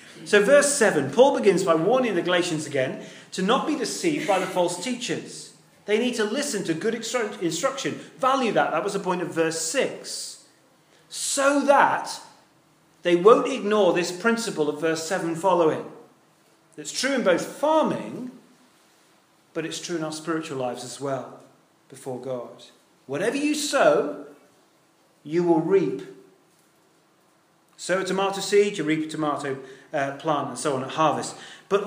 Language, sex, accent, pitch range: English, male, British, 160-230 Hz